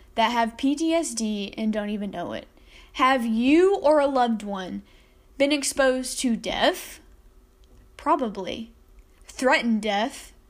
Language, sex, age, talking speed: English, female, 10-29, 120 wpm